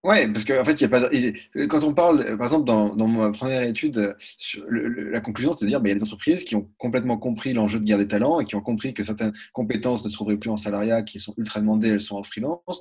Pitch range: 105-130 Hz